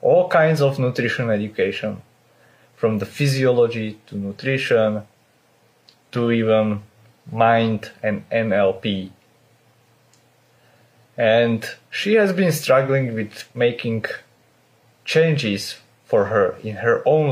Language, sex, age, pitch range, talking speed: English, male, 30-49, 110-135 Hz, 95 wpm